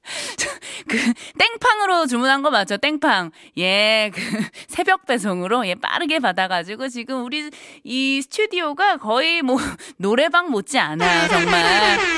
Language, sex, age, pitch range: Korean, female, 20-39, 215-330 Hz